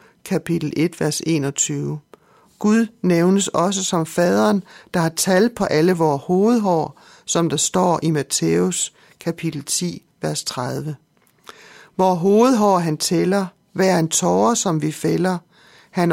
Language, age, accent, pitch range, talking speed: Danish, 60-79, native, 160-195 Hz, 135 wpm